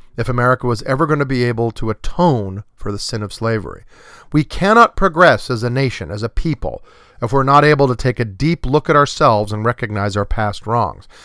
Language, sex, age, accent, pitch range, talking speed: English, male, 40-59, American, 110-145 Hz, 215 wpm